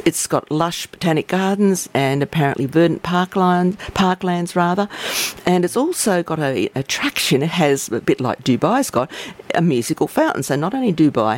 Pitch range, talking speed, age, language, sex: 135-175 Hz, 165 wpm, 50-69, English, female